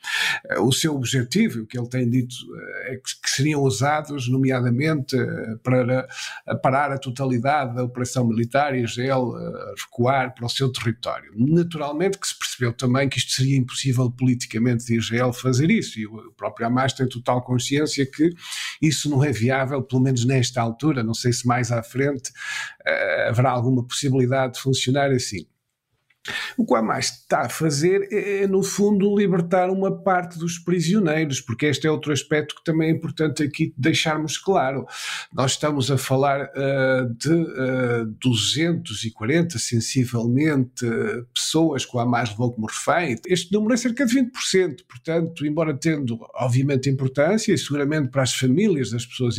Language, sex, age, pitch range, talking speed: Portuguese, male, 50-69, 120-155 Hz, 160 wpm